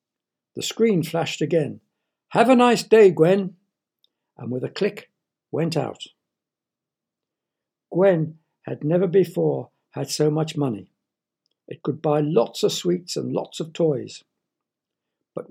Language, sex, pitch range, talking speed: English, male, 135-170 Hz, 130 wpm